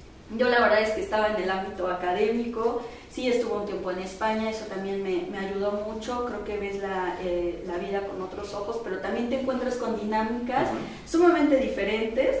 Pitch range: 195-245 Hz